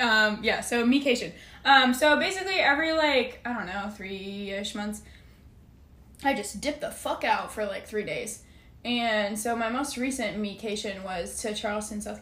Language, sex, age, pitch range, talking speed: English, female, 10-29, 210-240 Hz, 165 wpm